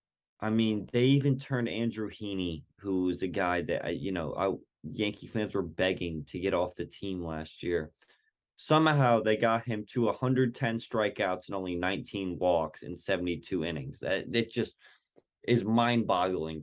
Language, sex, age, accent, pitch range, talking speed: English, male, 20-39, American, 100-130 Hz, 160 wpm